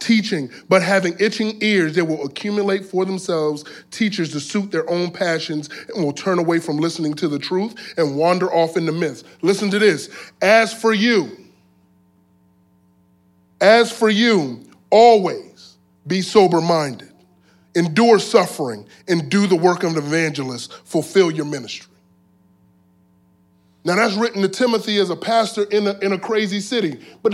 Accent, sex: American, male